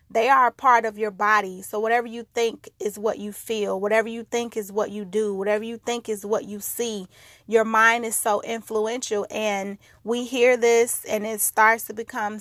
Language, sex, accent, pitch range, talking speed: English, female, American, 210-235 Hz, 210 wpm